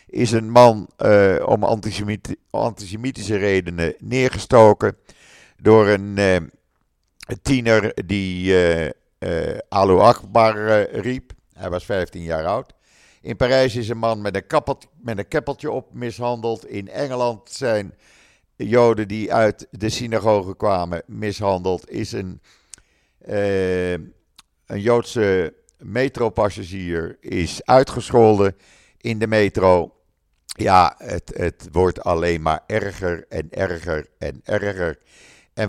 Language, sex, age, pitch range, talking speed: Dutch, male, 50-69, 95-120 Hz, 115 wpm